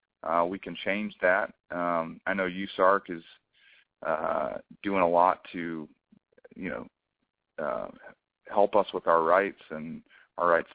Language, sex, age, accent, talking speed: English, male, 30-49, American, 145 wpm